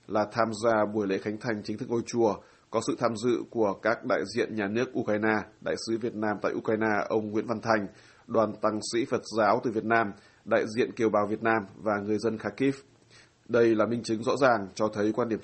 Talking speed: 235 wpm